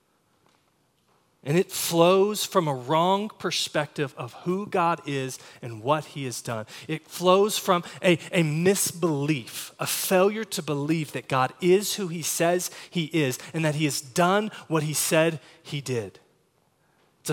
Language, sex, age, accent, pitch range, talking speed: English, male, 30-49, American, 150-195 Hz, 155 wpm